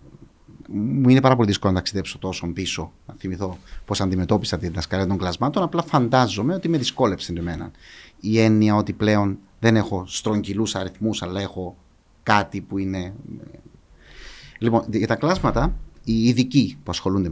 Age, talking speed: 30-49, 150 wpm